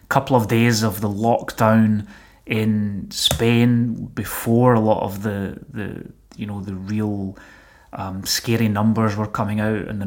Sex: male